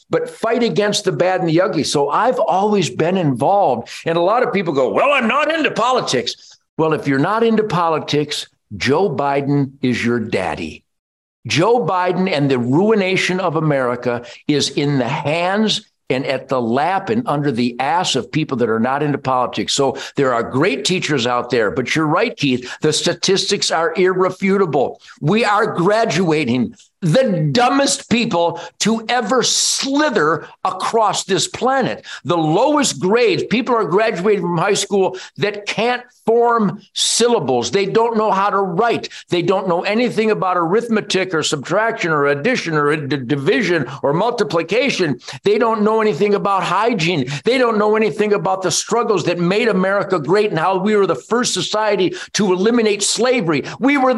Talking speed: 165 wpm